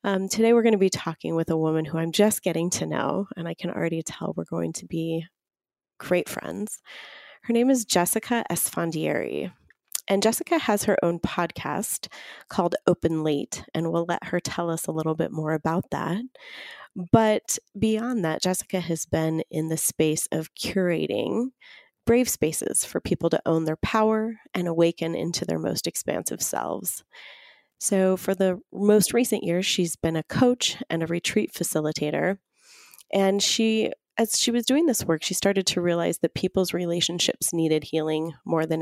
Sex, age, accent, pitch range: female, 30-49, American, 160-210 Hz